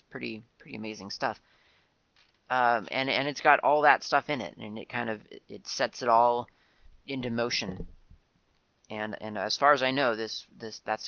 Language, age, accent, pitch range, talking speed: English, 30-49, American, 110-135 Hz, 190 wpm